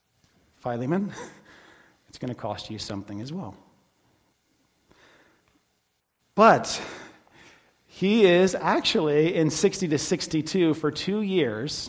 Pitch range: 140-170 Hz